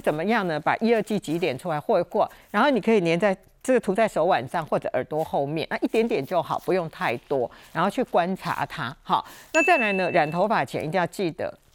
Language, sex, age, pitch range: Chinese, female, 50-69, 165-225 Hz